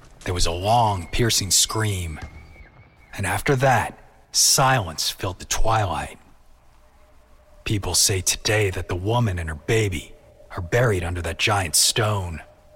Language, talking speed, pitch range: English, 130 wpm, 85-125 Hz